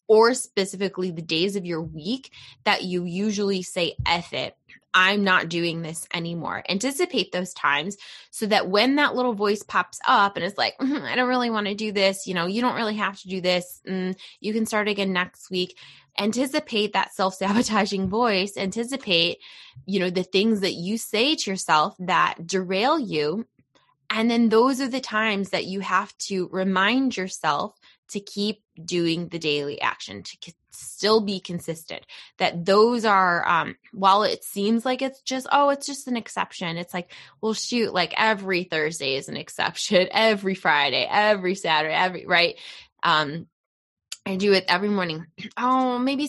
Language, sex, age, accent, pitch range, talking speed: English, female, 20-39, American, 180-220 Hz, 170 wpm